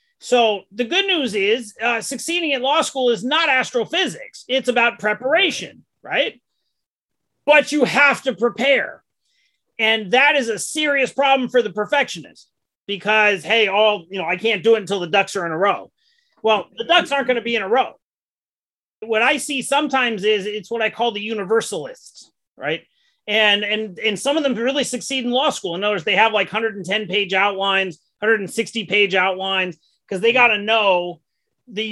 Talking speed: 185 wpm